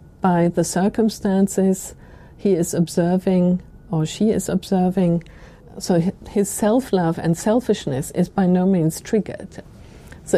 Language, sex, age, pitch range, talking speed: English, female, 50-69, 175-205 Hz, 120 wpm